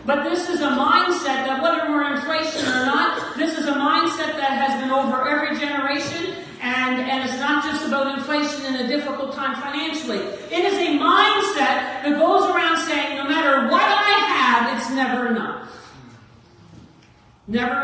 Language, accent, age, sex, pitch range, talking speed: English, American, 50-69, female, 270-320 Hz, 170 wpm